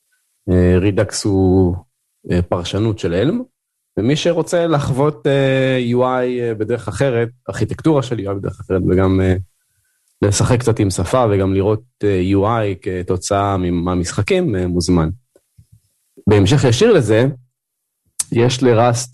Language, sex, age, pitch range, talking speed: Hebrew, male, 30-49, 95-120 Hz, 120 wpm